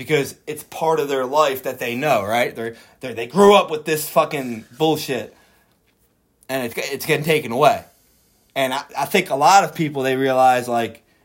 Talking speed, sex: 190 wpm, male